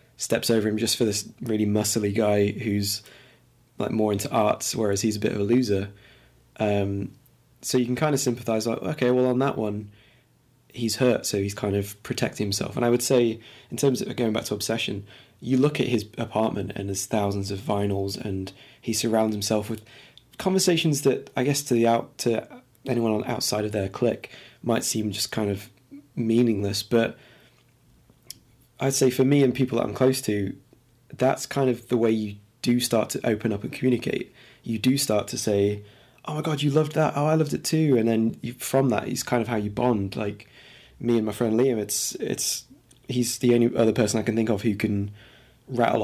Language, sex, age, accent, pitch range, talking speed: English, male, 20-39, British, 105-125 Hz, 205 wpm